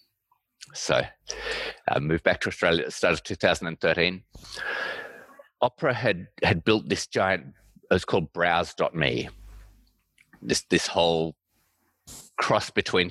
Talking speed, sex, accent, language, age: 125 wpm, male, Australian, English, 30-49